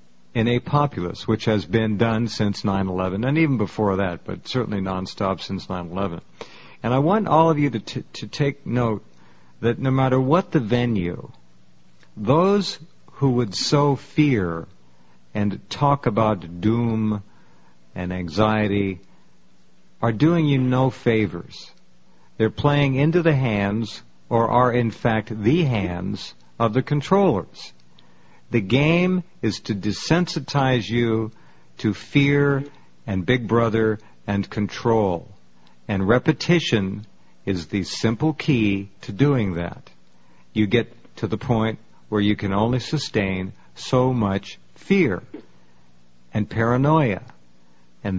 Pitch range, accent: 90-130 Hz, American